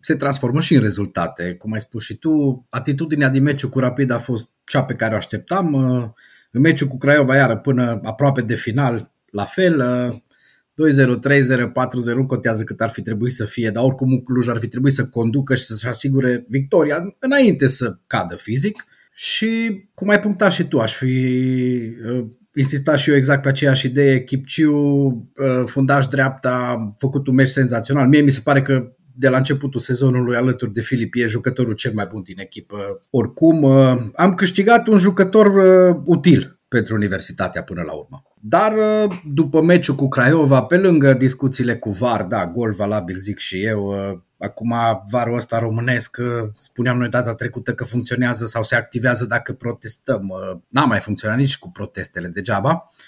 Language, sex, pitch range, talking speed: Romanian, male, 115-140 Hz, 170 wpm